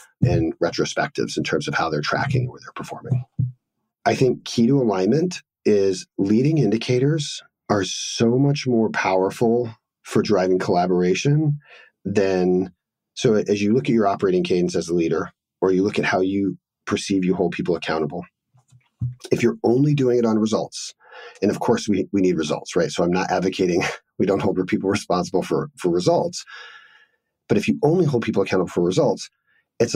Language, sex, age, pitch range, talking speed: English, male, 40-59, 95-120 Hz, 175 wpm